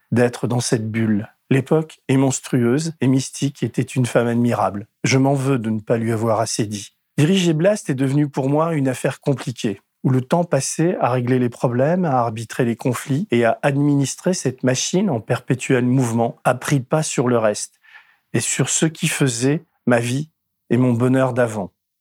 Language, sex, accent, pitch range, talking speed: French, male, French, 125-155 Hz, 190 wpm